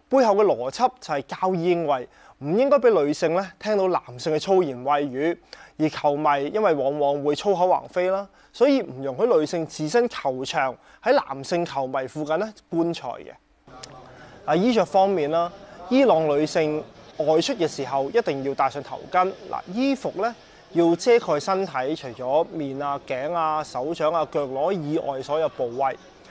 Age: 20-39